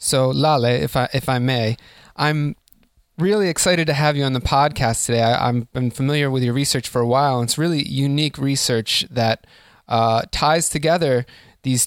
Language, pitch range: English, 115-145 Hz